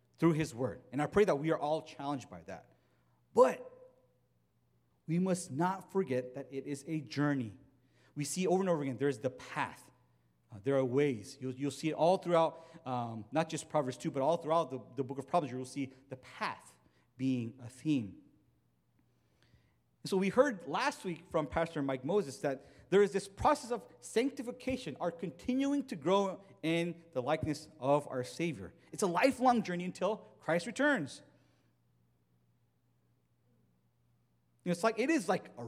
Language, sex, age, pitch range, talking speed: English, male, 30-49, 130-180 Hz, 170 wpm